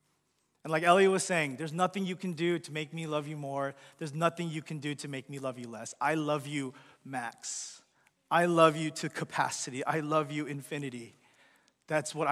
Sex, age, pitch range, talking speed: male, 30-49, 140-175 Hz, 205 wpm